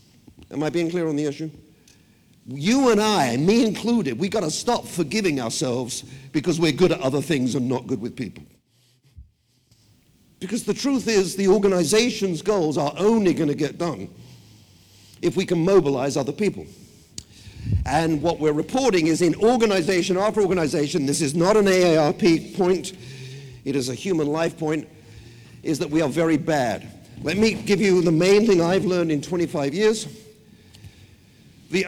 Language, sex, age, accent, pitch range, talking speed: English, male, 50-69, British, 130-190 Hz, 160 wpm